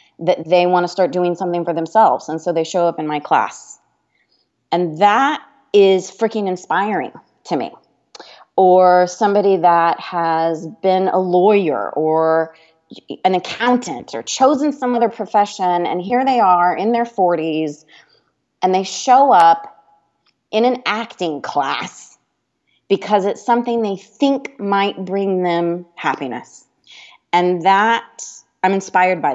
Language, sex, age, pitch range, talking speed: English, female, 30-49, 170-220 Hz, 140 wpm